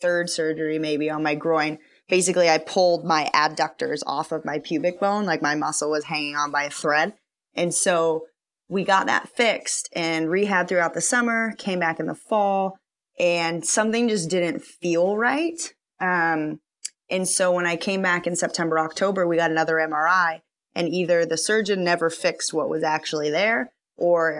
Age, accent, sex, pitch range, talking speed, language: 20-39, American, female, 160-185 Hz, 175 wpm, English